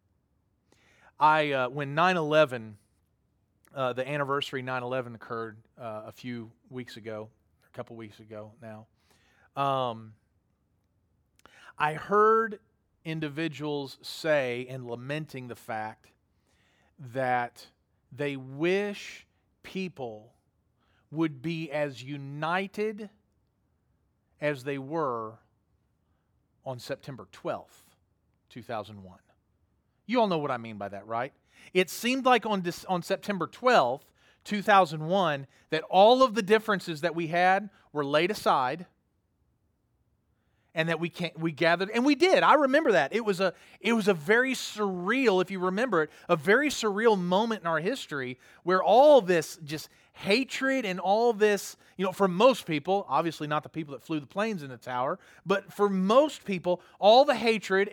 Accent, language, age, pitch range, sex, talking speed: American, English, 40-59, 125-205 Hz, male, 140 wpm